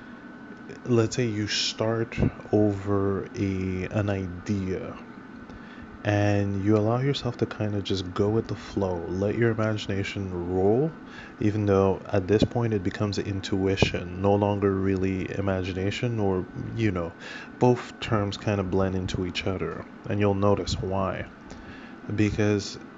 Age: 20-39